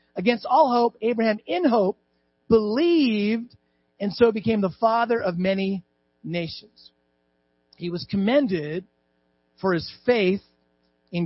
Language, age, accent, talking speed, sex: English, 50-69, American, 115 wpm, male